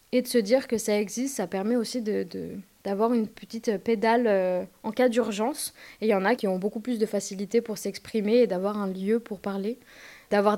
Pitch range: 200-240 Hz